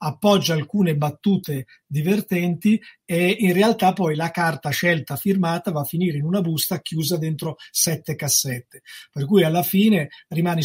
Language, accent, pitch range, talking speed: Italian, native, 155-185 Hz, 150 wpm